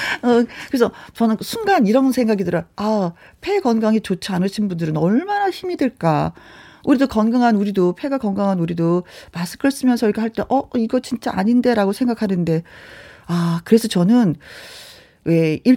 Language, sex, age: Korean, female, 40-59